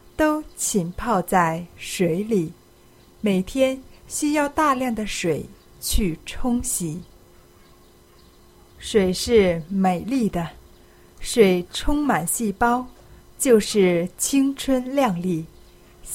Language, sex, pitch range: Chinese, female, 170-240 Hz